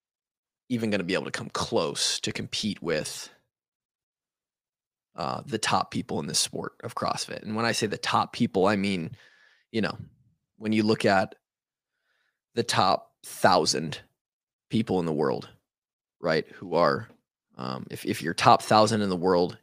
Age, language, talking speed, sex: 20-39, English, 165 wpm, male